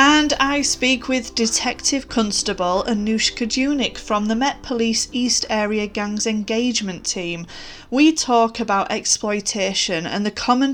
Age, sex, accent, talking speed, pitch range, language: 30-49, female, British, 135 wpm, 195-245 Hz, English